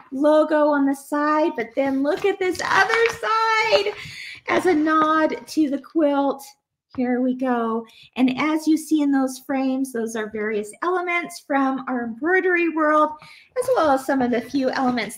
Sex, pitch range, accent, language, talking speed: female, 225-305 Hz, American, English, 170 wpm